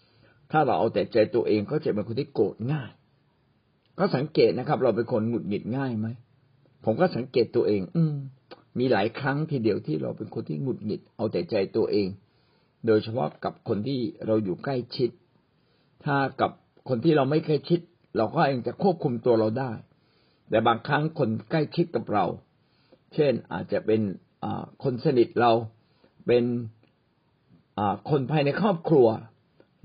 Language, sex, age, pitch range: Thai, male, 60-79, 110-145 Hz